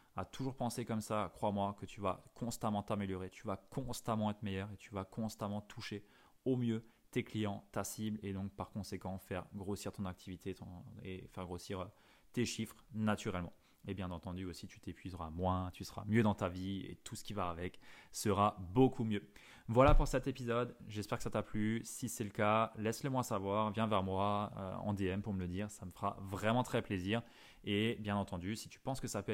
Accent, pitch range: French, 95-110 Hz